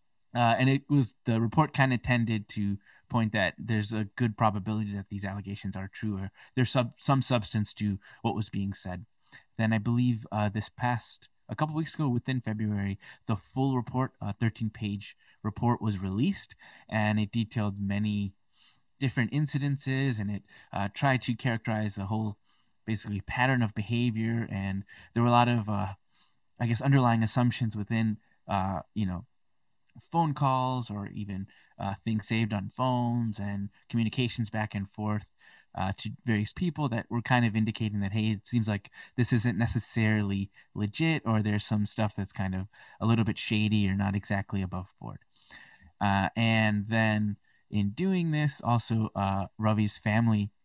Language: English